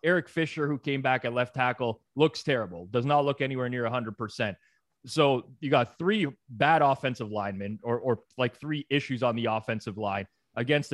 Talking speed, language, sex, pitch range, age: 185 wpm, English, male, 110-150 Hz, 30-49